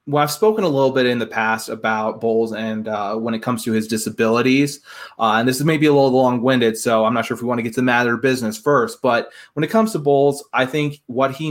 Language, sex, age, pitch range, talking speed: English, male, 20-39, 115-145 Hz, 270 wpm